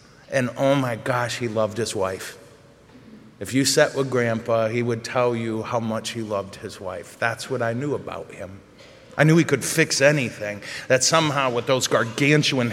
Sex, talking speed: male, 190 wpm